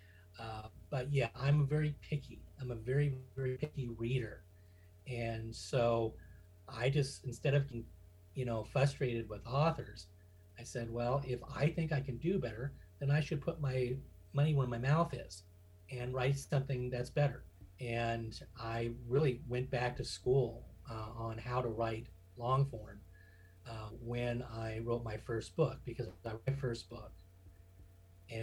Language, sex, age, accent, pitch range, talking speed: English, male, 40-59, American, 95-135 Hz, 160 wpm